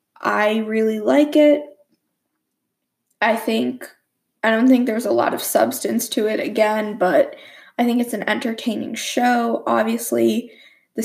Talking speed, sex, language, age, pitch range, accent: 140 wpm, female, English, 10-29, 210-290 Hz, American